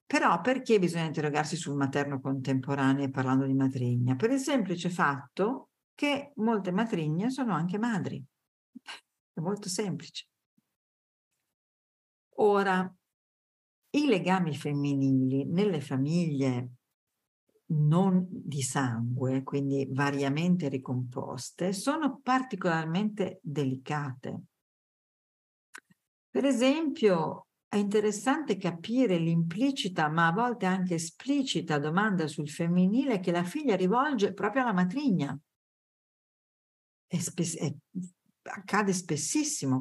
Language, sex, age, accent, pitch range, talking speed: Italian, female, 50-69, native, 145-220 Hz, 95 wpm